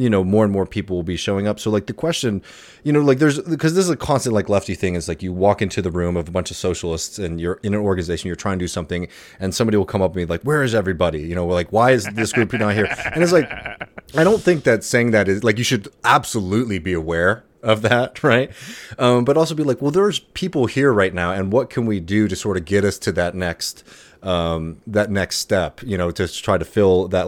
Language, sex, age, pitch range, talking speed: English, male, 30-49, 85-110 Hz, 270 wpm